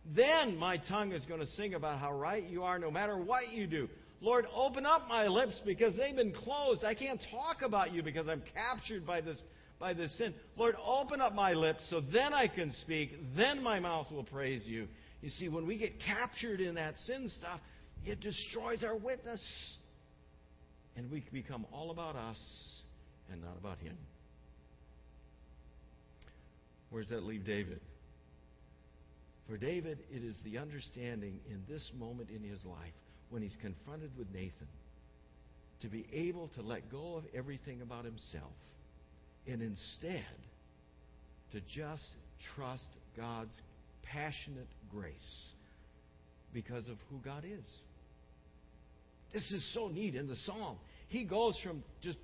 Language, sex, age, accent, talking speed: English, male, 60-79, American, 155 wpm